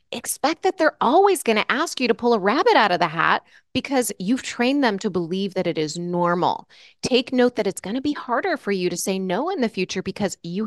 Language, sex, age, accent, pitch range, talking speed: English, female, 30-49, American, 175-245 Hz, 245 wpm